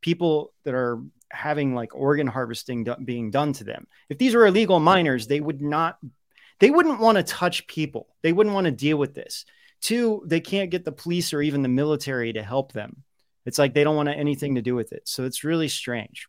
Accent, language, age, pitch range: American, English, 30-49, 120-165 Hz